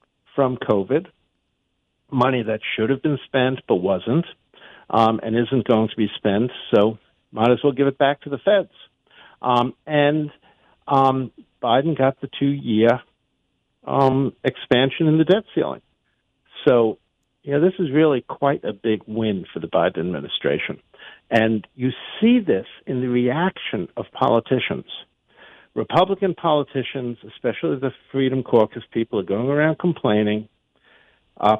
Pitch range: 120-155 Hz